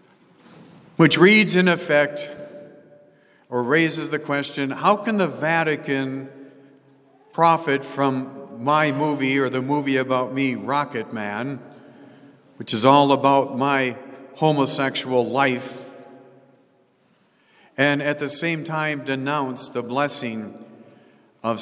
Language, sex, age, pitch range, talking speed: English, male, 50-69, 130-150 Hz, 110 wpm